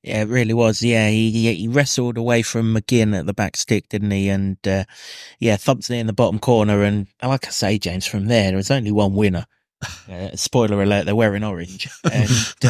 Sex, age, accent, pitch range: male, 30-49, British, 100-120 Hz